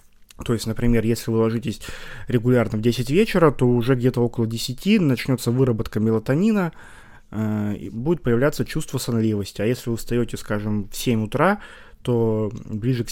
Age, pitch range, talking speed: 20-39, 110-145 Hz, 155 wpm